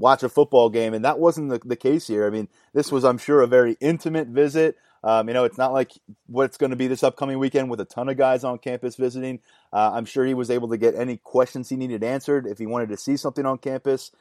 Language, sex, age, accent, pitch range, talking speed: English, male, 30-49, American, 120-145 Hz, 270 wpm